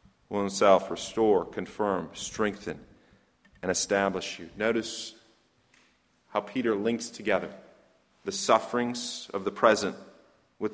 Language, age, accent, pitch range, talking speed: English, 30-49, American, 105-130 Hz, 105 wpm